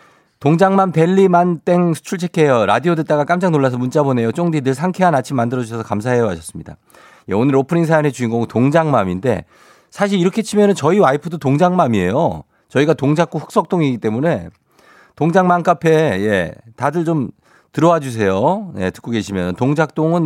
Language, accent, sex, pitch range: Korean, native, male, 105-160 Hz